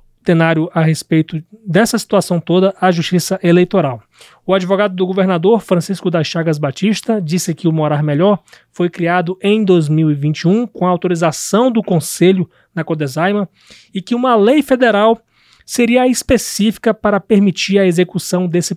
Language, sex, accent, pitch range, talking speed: Portuguese, male, Brazilian, 165-205 Hz, 135 wpm